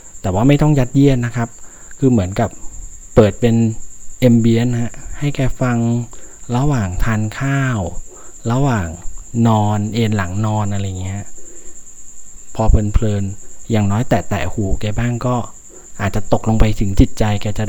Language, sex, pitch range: Thai, male, 95-125 Hz